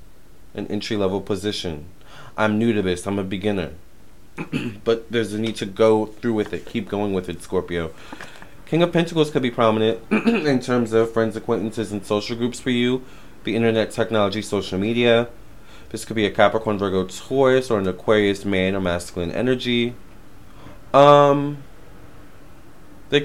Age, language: 20-39, English